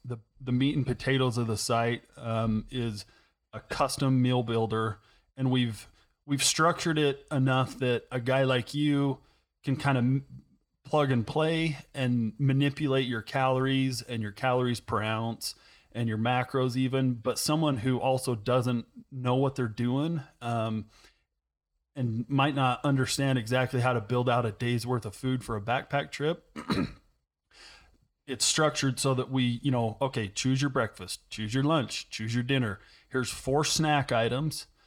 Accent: American